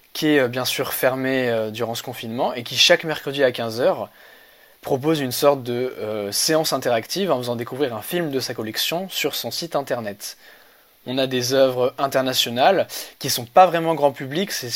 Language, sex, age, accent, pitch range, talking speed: French, male, 20-39, French, 125-150 Hz, 185 wpm